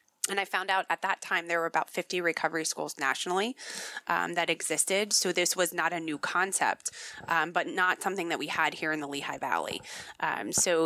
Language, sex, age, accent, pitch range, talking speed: English, female, 20-39, American, 160-185 Hz, 210 wpm